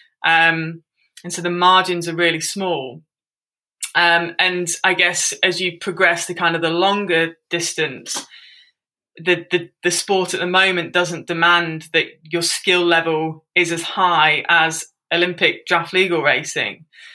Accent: British